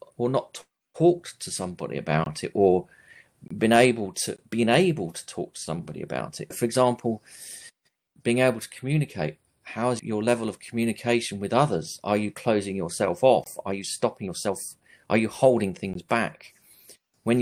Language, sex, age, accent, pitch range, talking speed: English, male, 40-59, British, 105-130 Hz, 165 wpm